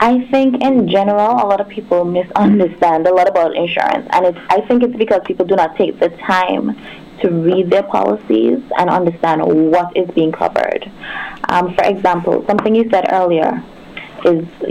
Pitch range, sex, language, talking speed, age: 175-210 Hz, female, English, 170 wpm, 20-39